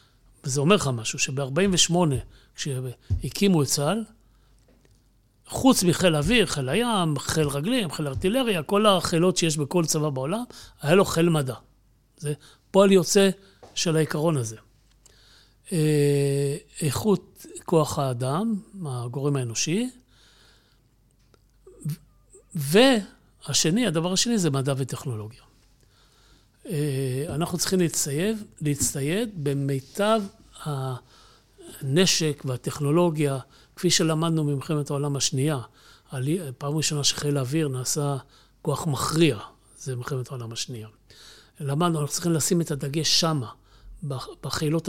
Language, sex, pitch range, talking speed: Hebrew, male, 135-180 Hz, 100 wpm